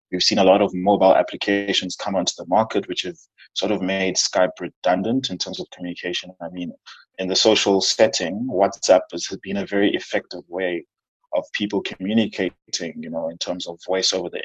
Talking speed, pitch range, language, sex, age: 190 wpm, 95-105 Hz, English, male, 20-39